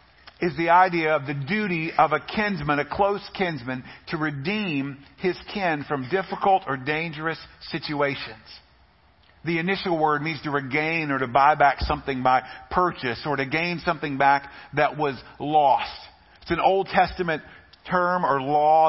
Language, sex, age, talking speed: English, male, 50-69, 155 wpm